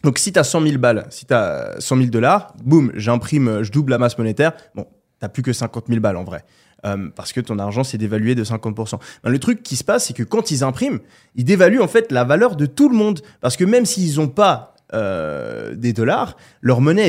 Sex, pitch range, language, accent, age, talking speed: male, 110-145 Hz, French, French, 20-39, 250 wpm